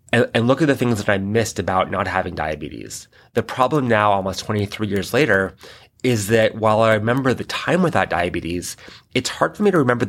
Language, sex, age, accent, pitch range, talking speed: English, male, 30-49, American, 100-120 Hz, 200 wpm